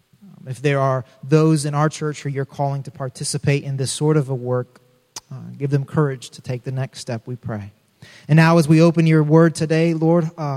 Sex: male